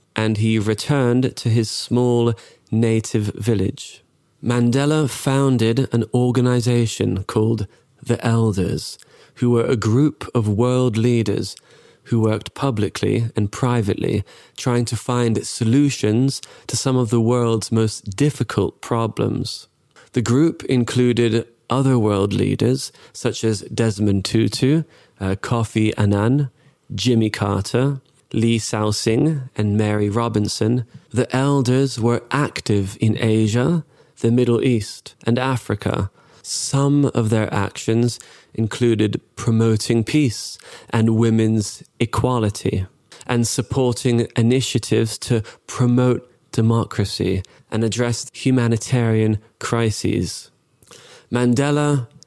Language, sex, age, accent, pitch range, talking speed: English, male, 20-39, British, 110-125 Hz, 105 wpm